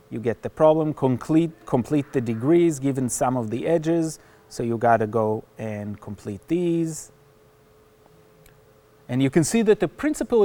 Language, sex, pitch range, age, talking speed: English, male, 125-160 Hz, 30-49, 160 wpm